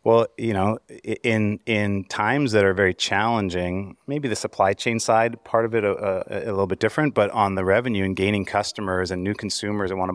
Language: English